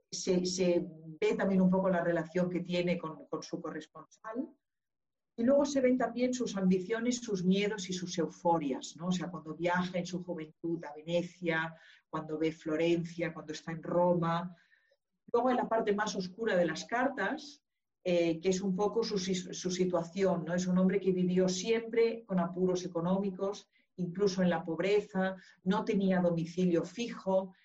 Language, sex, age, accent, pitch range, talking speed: Spanish, female, 40-59, Spanish, 170-195 Hz, 170 wpm